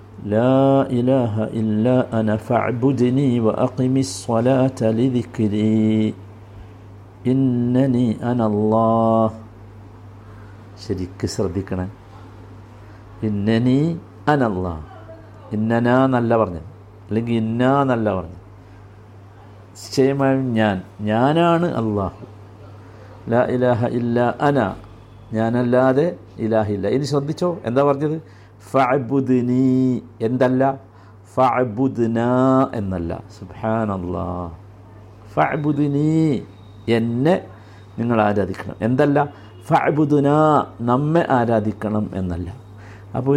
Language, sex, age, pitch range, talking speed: Malayalam, male, 60-79, 100-130 Hz, 50 wpm